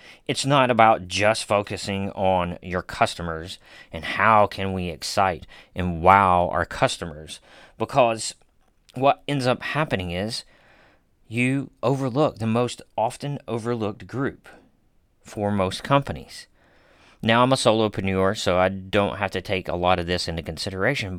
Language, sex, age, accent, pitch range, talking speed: English, male, 40-59, American, 90-120 Hz, 140 wpm